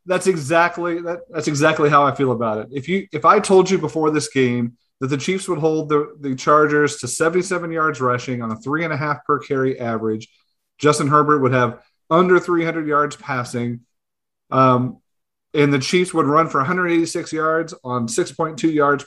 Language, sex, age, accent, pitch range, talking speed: English, male, 30-49, American, 130-165 Hz, 210 wpm